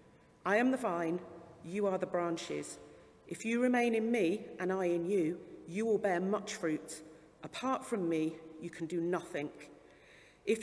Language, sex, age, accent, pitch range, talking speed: English, female, 40-59, British, 165-220 Hz, 170 wpm